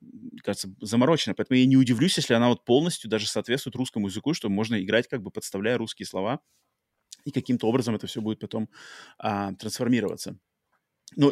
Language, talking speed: Russian, 170 wpm